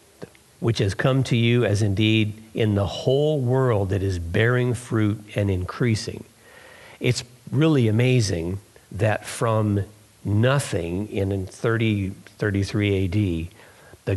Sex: male